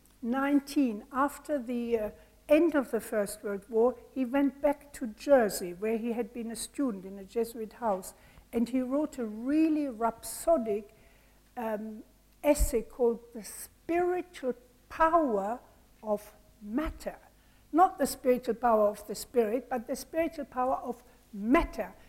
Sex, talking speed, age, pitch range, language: female, 140 wpm, 60-79, 230-285 Hz, English